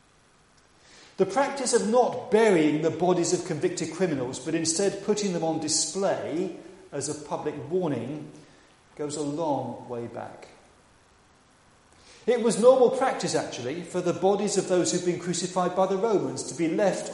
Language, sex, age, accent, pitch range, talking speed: English, male, 40-59, British, 145-190 Hz, 160 wpm